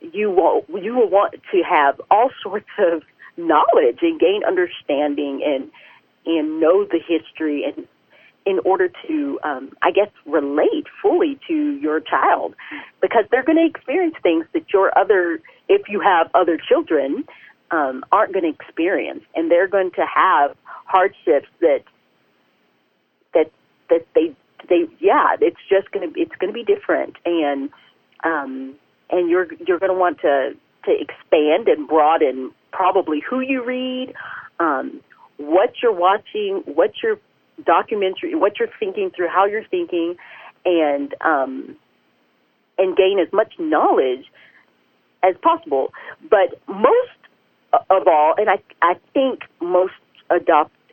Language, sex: English, female